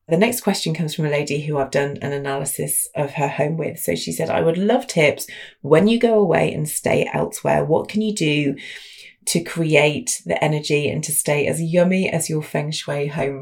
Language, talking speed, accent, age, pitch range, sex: English, 215 wpm, British, 30-49, 150-195 Hz, female